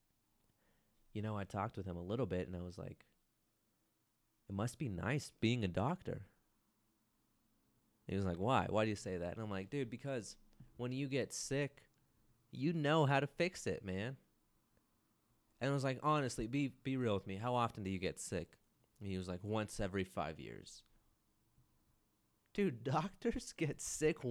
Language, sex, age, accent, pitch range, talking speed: English, male, 30-49, American, 90-130 Hz, 180 wpm